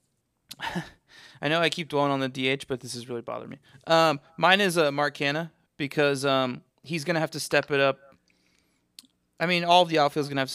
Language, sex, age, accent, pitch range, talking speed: English, male, 20-39, American, 125-140 Hz, 220 wpm